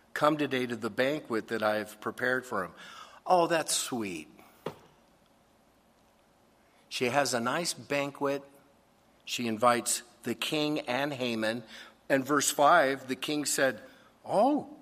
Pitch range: 125-170 Hz